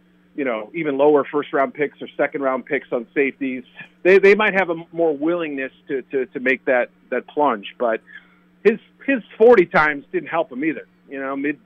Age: 40-59